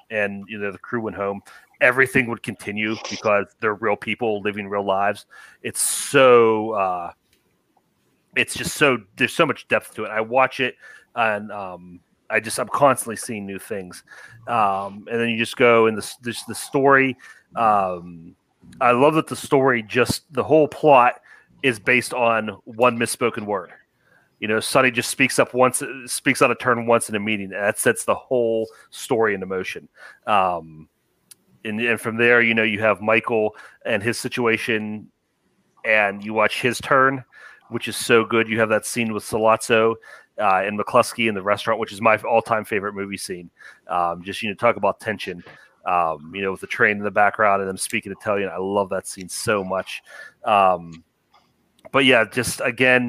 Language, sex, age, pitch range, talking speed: English, male, 30-49, 100-120 Hz, 185 wpm